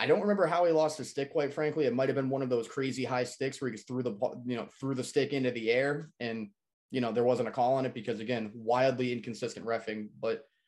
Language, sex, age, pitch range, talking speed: English, male, 20-39, 115-145 Hz, 270 wpm